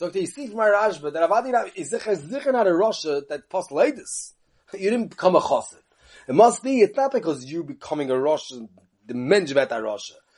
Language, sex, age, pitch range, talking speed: English, male, 30-49, 160-235 Hz, 180 wpm